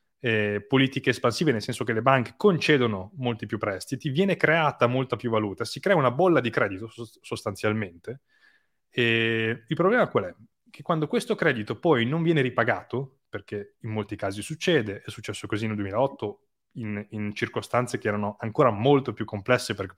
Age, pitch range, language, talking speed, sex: 20-39, 105-135 Hz, Italian, 170 wpm, male